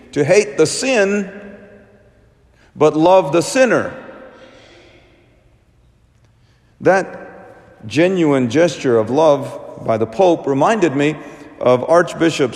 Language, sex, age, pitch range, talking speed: English, male, 50-69, 130-185 Hz, 95 wpm